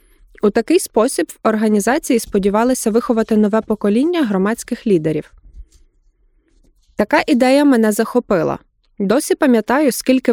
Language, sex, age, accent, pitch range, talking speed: Ukrainian, female, 20-39, native, 200-250 Hz, 105 wpm